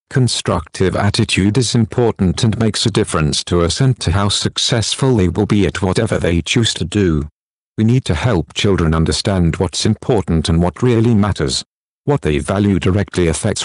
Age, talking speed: 50-69, 175 wpm